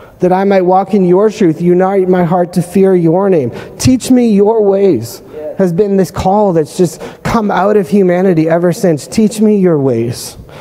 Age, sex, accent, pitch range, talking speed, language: 30-49, male, American, 155-195 Hz, 190 wpm, English